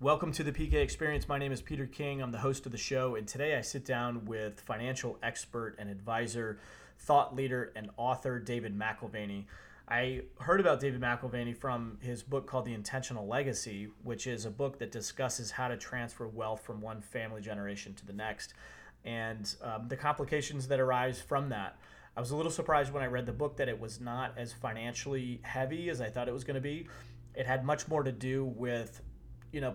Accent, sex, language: American, male, English